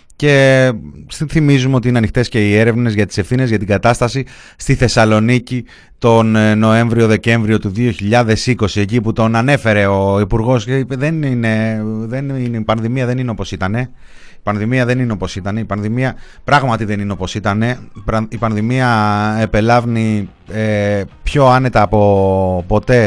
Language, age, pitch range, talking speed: Greek, 30-49, 105-135 Hz, 150 wpm